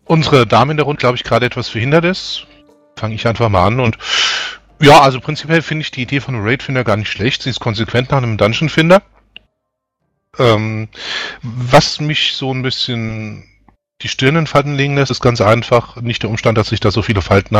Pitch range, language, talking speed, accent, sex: 110-140 Hz, German, 205 wpm, German, male